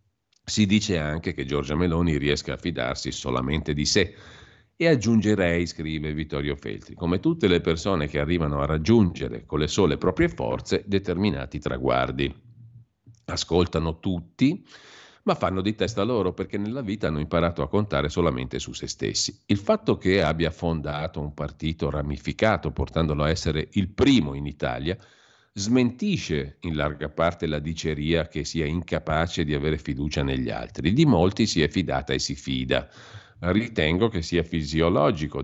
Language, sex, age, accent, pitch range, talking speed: Italian, male, 50-69, native, 75-100 Hz, 155 wpm